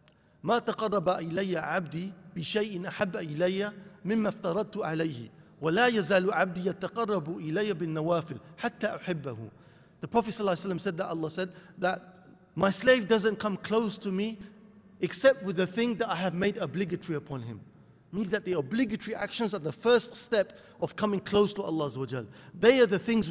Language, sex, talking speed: English, male, 115 wpm